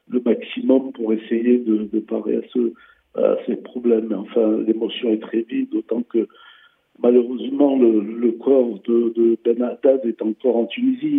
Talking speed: 165 wpm